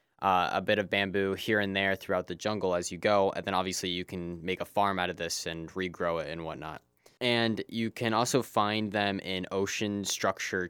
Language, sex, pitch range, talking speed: English, male, 90-110 Hz, 220 wpm